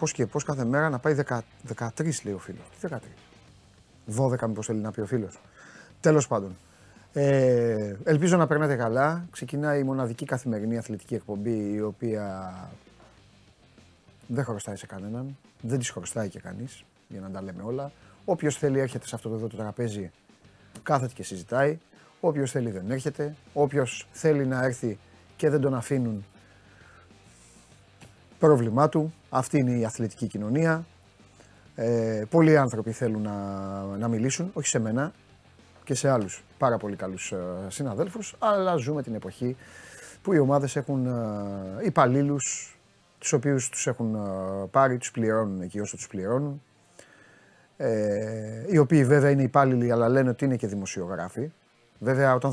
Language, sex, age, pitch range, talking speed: Greek, male, 30-49, 105-140 Hz, 150 wpm